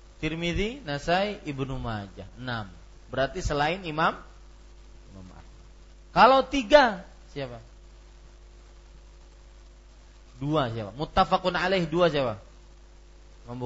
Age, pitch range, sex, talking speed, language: 30-49, 105-170 Hz, male, 85 wpm, Malay